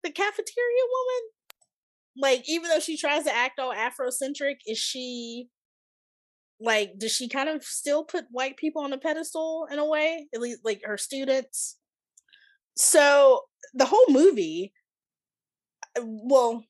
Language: English